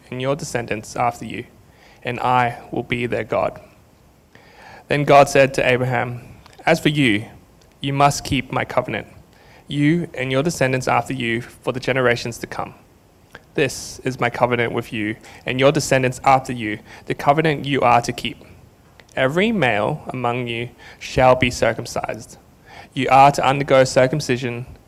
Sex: male